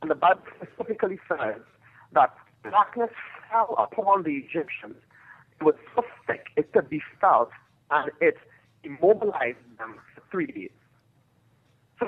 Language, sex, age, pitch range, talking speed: English, male, 50-69, 145-225 Hz, 135 wpm